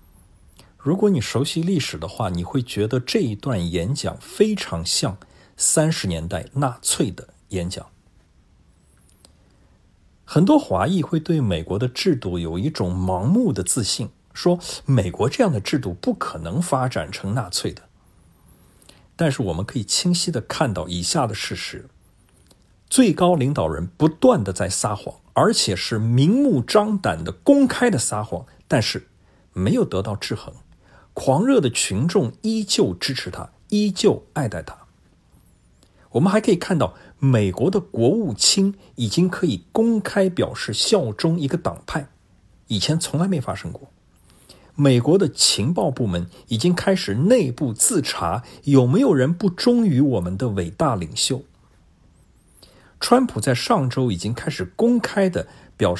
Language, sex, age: Chinese, male, 50-69